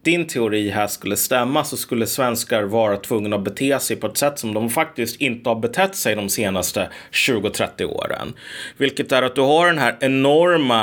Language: Swedish